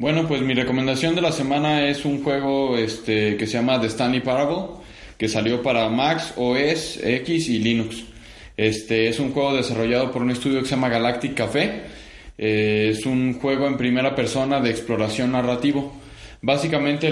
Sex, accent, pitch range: male, Mexican, 115-140 Hz